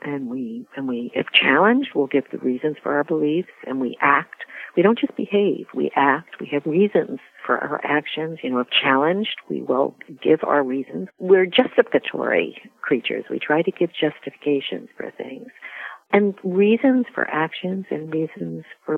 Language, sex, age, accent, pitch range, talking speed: English, female, 50-69, American, 165-245 Hz, 170 wpm